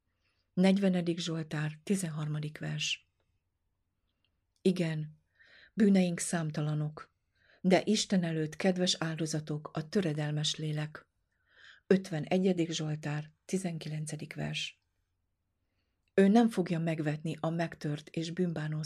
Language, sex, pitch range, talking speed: Hungarian, female, 150-180 Hz, 85 wpm